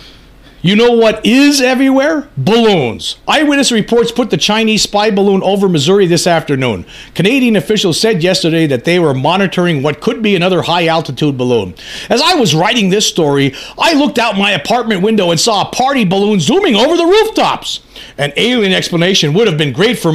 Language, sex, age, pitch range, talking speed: English, male, 40-59, 170-235 Hz, 180 wpm